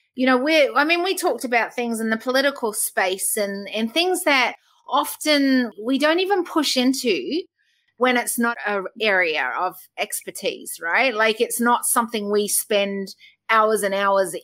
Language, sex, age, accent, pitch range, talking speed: English, female, 30-49, Australian, 200-285 Hz, 165 wpm